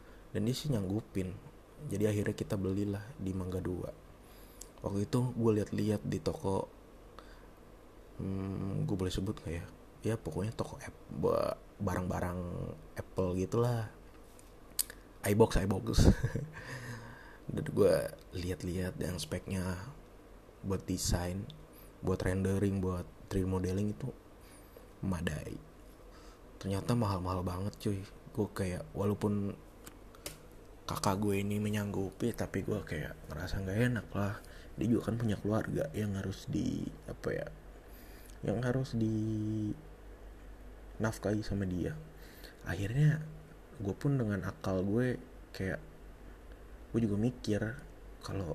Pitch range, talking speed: 95-110 Hz, 115 wpm